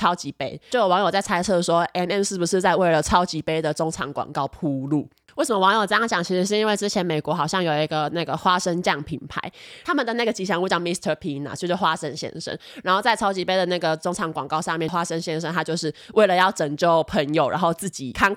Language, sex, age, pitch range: Chinese, female, 20-39, 160-200 Hz